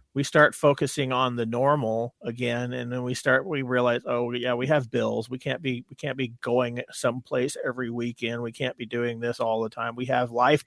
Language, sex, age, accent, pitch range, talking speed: English, male, 40-59, American, 120-140 Hz, 220 wpm